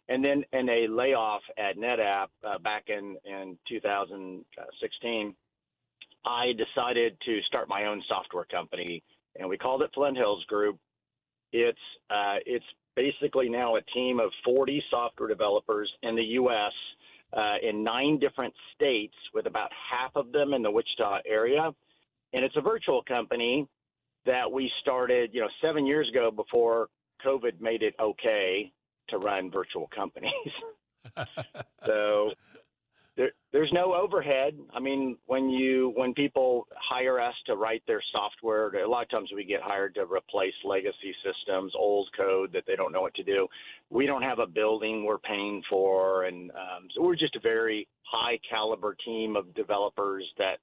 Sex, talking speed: male, 160 wpm